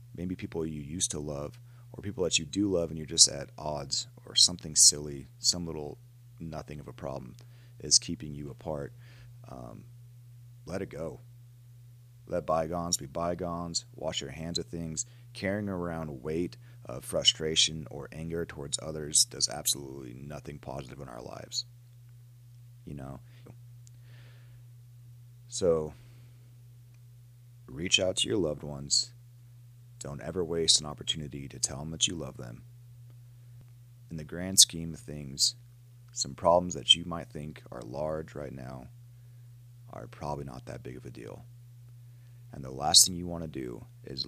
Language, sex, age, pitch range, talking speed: English, male, 30-49, 80-120 Hz, 155 wpm